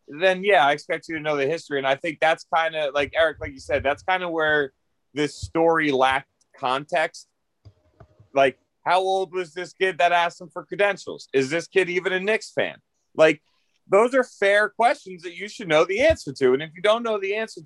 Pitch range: 140-185 Hz